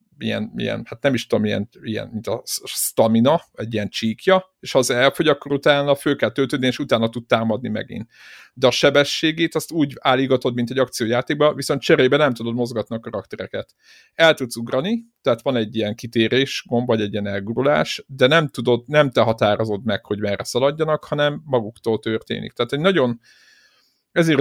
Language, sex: Hungarian, male